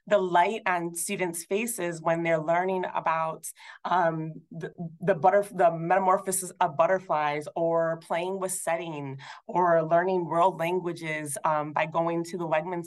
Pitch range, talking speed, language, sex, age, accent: 170-205 Hz, 140 wpm, English, female, 30-49, American